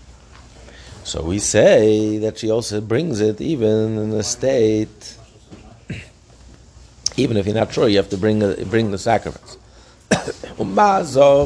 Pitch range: 100-110 Hz